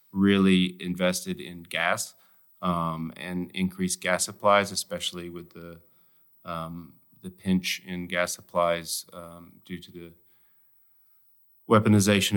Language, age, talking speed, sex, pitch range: Hungarian, 30-49, 110 wpm, male, 85-90 Hz